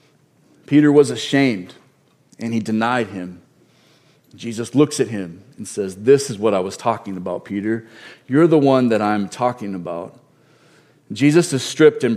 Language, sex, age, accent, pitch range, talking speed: English, male, 40-59, American, 115-170 Hz, 160 wpm